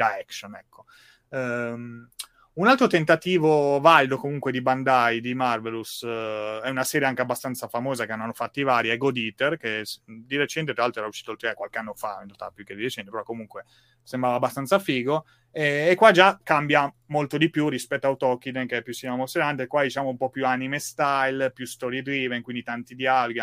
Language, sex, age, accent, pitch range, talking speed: Italian, male, 30-49, native, 110-135 Hz, 205 wpm